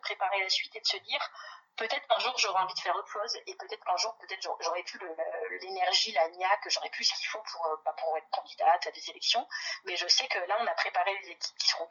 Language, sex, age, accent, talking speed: French, female, 30-49, French, 255 wpm